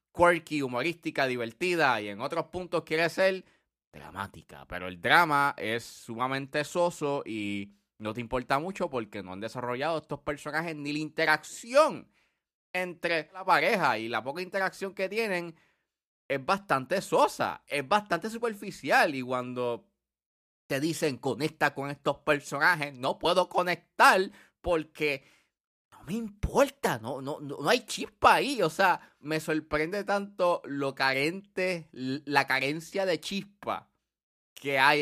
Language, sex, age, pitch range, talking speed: Spanish, male, 30-49, 130-180 Hz, 135 wpm